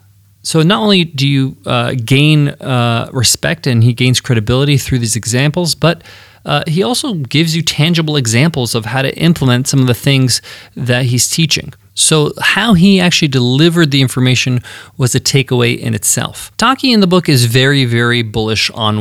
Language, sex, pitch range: English, male, 120-155 Hz